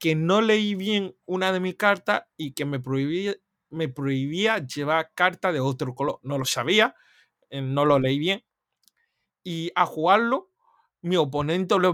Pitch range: 130-175 Hz